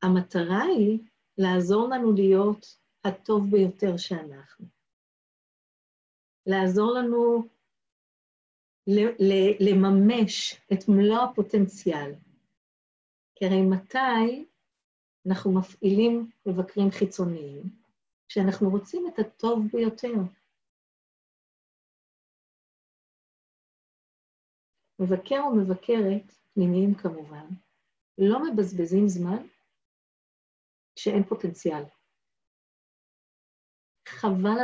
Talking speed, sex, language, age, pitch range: 65 wpm, female, Hebrew, 50-69, 185-225 Hz